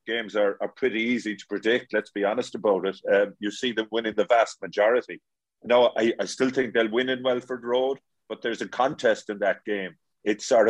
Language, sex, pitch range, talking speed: English, male, 105-125 Hz, 220 wpm